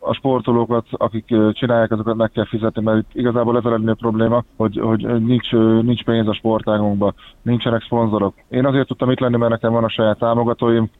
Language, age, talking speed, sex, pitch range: Hungarian, 20-39, 185 wpm, male, 110-120 Hz